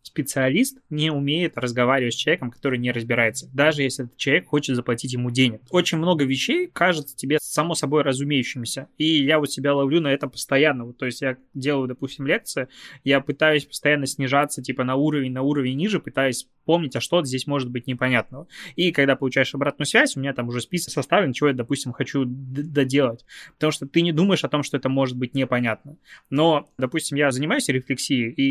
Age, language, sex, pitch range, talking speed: 20-39, Russian, male, 130-155 Hz, 190 wpm